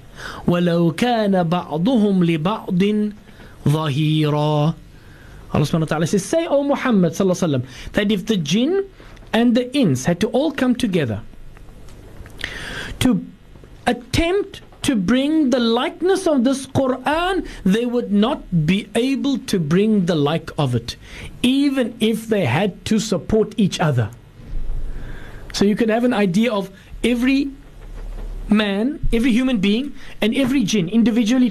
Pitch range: 165-265 Hz